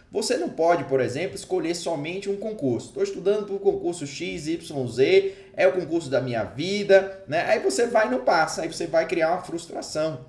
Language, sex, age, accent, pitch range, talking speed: Portuguese, male, 20-39, Brazilian, 135-200 Hz, 200 wpm